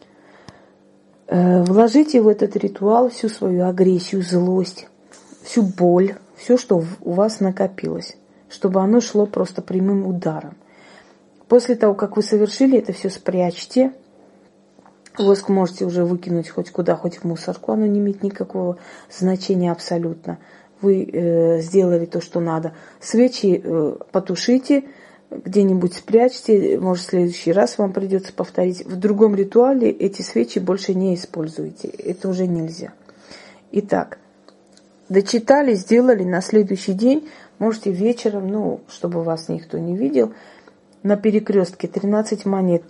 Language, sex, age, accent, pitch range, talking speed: Russian, female, 30-49, native, 180-215 Hz, 125 wpm